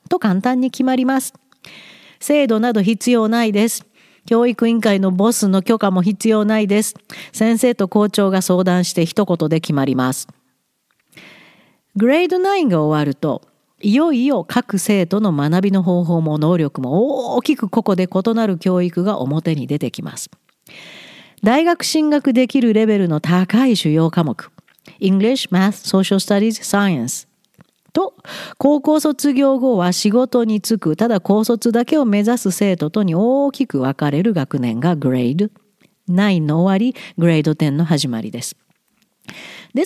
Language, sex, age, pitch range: Japanese, female, 50-69, 170-235 Hz